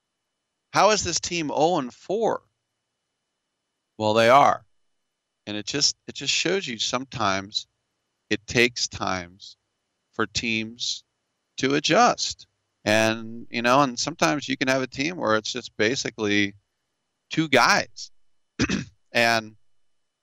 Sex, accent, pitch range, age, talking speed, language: male, American, 105-130 Hz, 40-59, 120 wpm, English